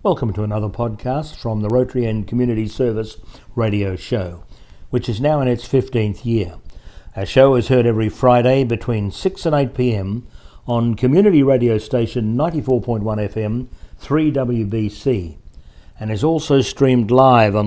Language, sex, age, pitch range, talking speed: English, male, 60-79, 110-135 Hz, 145 wpm